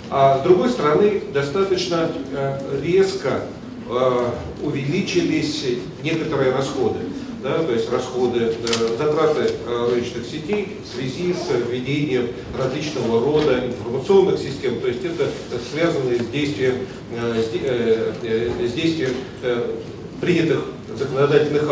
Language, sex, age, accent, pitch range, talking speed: Russian, male, 40-59, native, 125-170 Hz, 95 wpm